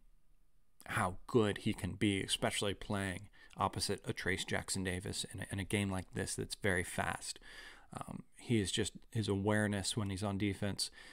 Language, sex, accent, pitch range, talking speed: English, male, American, 100-110 Hz, 175 wpm